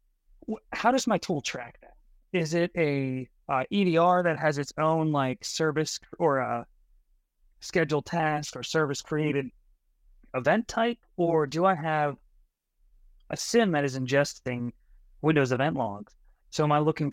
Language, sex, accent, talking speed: English, male, American, 145 wpm